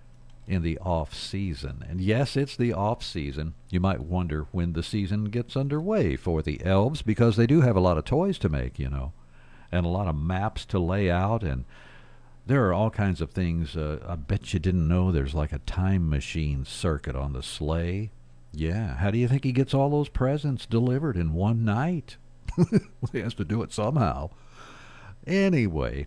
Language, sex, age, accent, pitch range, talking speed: English, male, 60-79, American, 80-110 Hz, 190 wpm